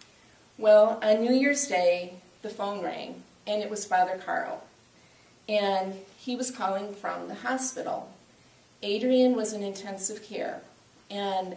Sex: female